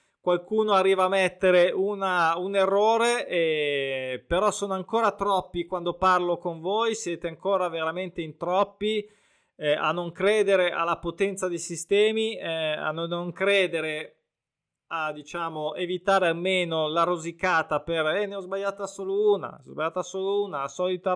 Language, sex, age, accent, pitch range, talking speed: Italian, male, 20-39, native, 155-195 Hz, 135 wpm